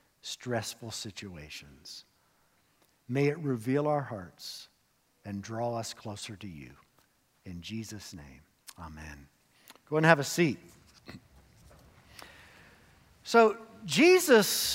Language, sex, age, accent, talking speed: English, male, 50-69, American, 100 wpm